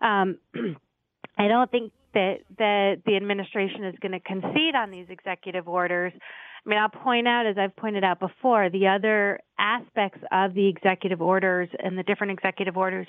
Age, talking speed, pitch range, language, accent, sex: 30-49, 175 wpm, 180-205 Hz, English, American, female